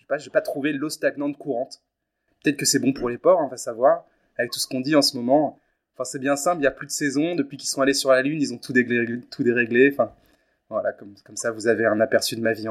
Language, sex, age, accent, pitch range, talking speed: French, male, 20-39, French, 130-165 Hz, 285 wpm